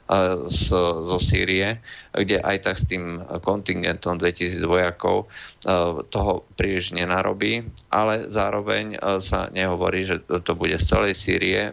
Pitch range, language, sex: 85-100 Hz, Slovak, male